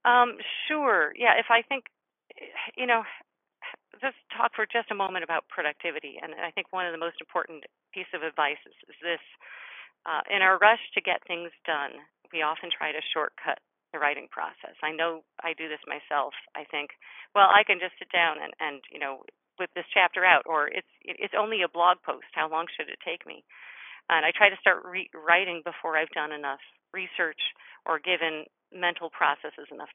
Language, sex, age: English, female, 40-59